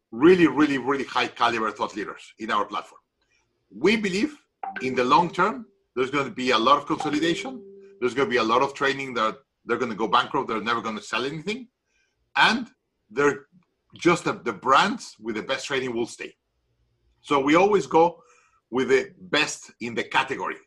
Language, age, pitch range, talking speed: English, 50-69, 130-210 Hz, 190 wpm